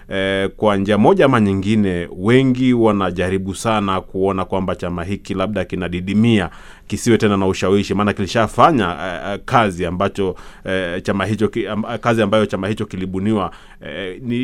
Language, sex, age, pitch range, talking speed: Swahili, male, 30-49, 95-110 Hz, 125 wpm